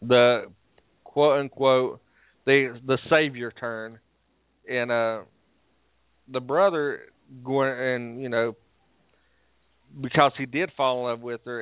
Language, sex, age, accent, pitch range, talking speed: English, male, 40-59, American, 120-145 Hz, 120 wpm